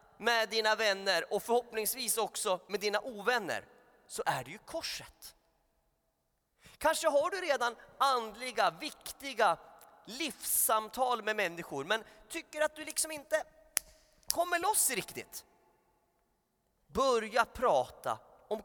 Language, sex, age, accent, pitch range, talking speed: Swedish, male, 30-49, native, 215-275 Hz, 115 wpm